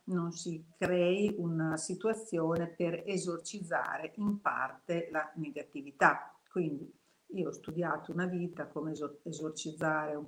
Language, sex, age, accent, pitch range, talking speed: Italian, female, 50-69, native, 155-195 Hz, 115 wpm